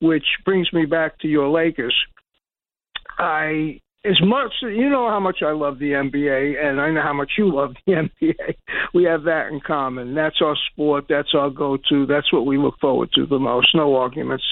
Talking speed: 200 wpm